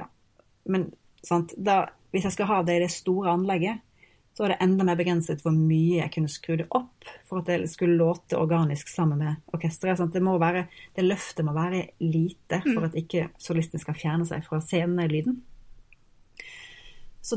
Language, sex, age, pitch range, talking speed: English, female, 30-49, 165-190 Hz, 190 wpm